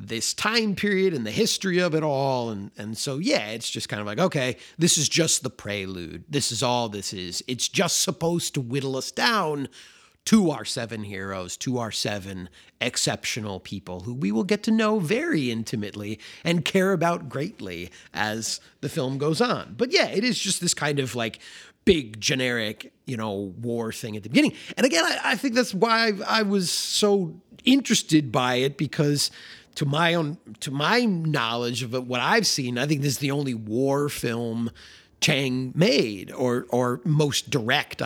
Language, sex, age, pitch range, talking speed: English, male, 30-49, 115-160 Hz, 190 wpm